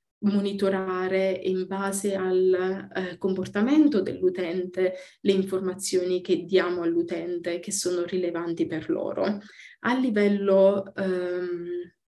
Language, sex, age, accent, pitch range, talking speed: Italian, female, 20-39, native, 185-210 Hz, 100 wpm